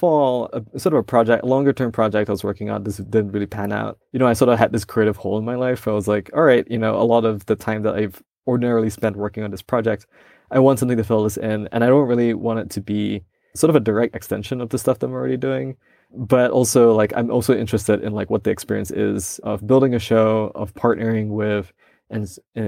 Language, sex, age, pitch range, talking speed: English, male, 20-39, 105-120 Hz, 255 wpm